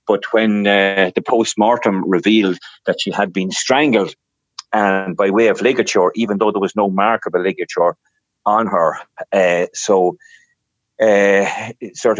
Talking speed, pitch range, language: 150 wpm, 90-105 Hz, English